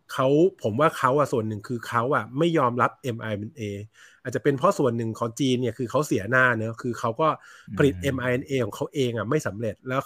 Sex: male